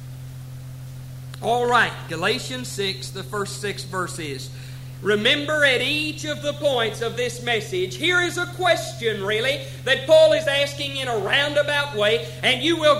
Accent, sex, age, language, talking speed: American, male, 50-69, English, 150 wpm